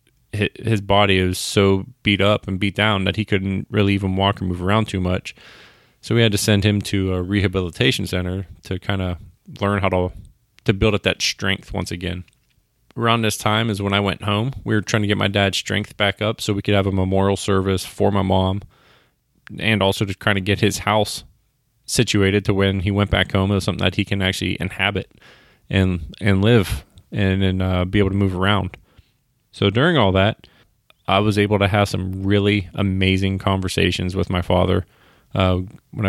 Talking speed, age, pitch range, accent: 205 wpm, 20-39, 95-105 Hz, American